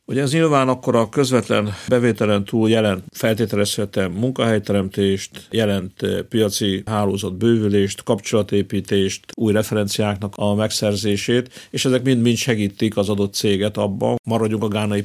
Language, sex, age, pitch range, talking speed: Hungarian, male, 50-69, 100-115 Hz, 125 wpm